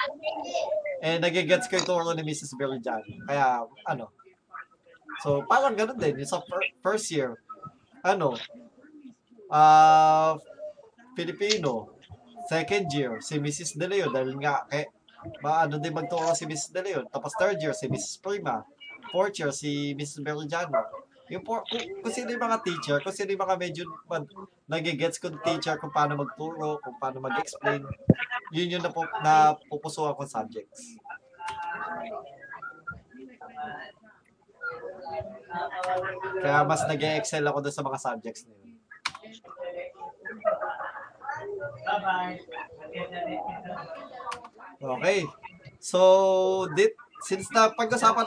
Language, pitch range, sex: Filipino, 155-230 Hz, male